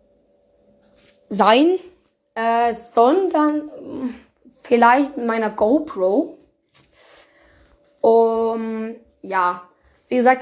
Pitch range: 220-280 Hz